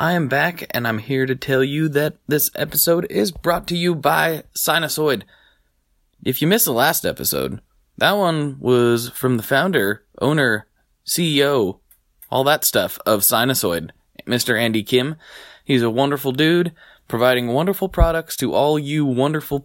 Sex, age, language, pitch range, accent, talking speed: male, 20-39, English, 115-150 Hz, American, 155 wpm